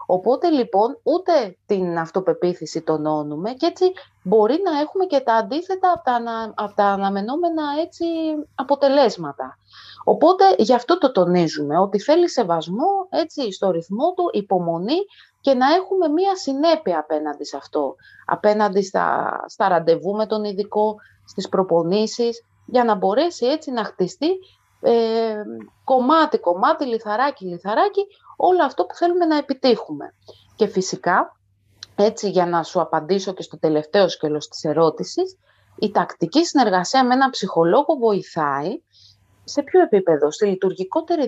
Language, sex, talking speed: Greek, female, 130 wpm